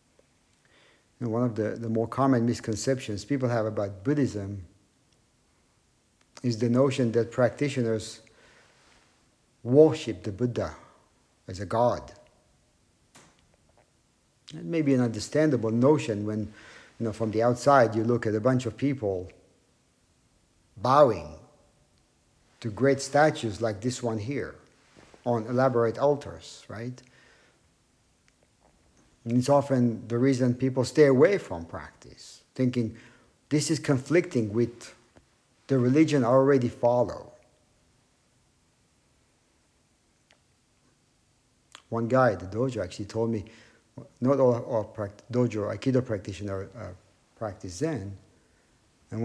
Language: English